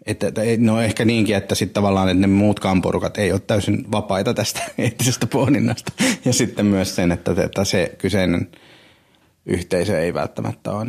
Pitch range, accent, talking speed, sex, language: 95-110 Hz, native, 175 wpm, male, Finnish